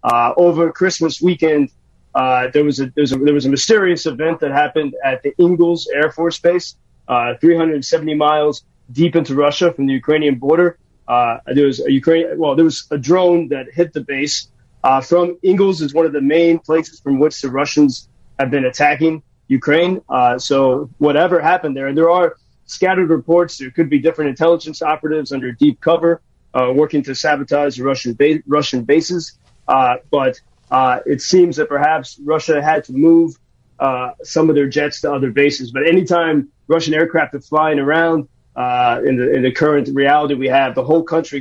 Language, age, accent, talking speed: English, 30-49, American, 185 wpm